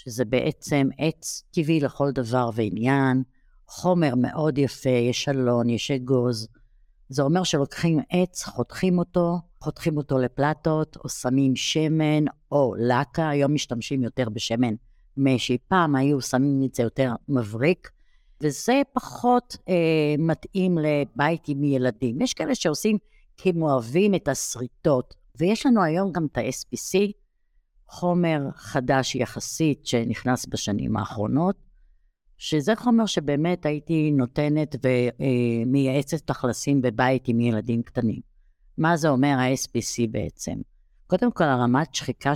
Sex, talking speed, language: female, 120 wpm, Hebrew